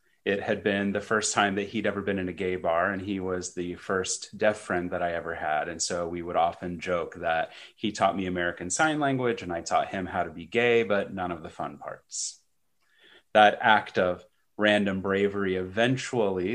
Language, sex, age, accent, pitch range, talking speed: English, male, 30-49, American, 90-100 Hz, 210 wpm